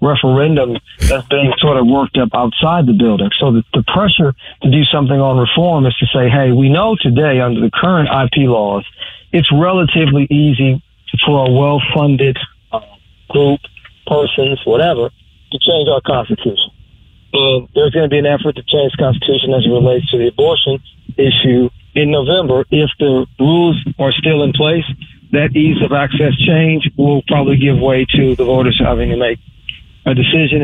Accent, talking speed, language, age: American, 170 wpm, English, 50-69